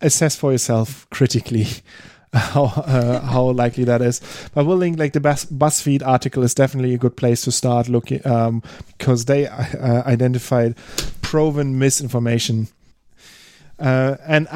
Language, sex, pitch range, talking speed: English, male, 125-145 Hz, 140 wpm